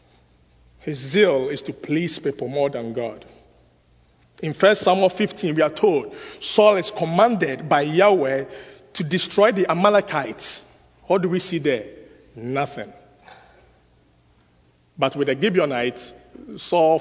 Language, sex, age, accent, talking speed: English, male, 50-69, Nigerian, 125 wpm